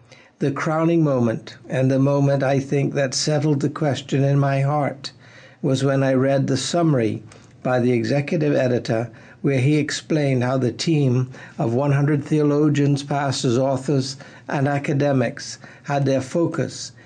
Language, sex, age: English, male, 60-79